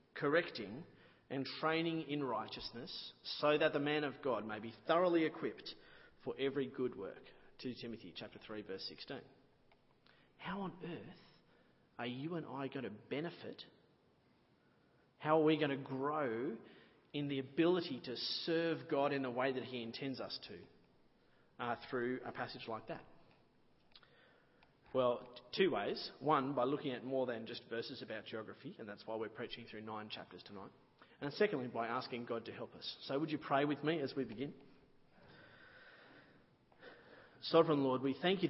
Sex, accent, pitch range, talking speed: male, Australian, 120-145 Hz, 165 wpm